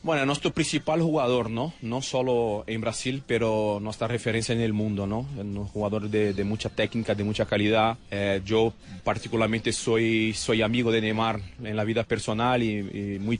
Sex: male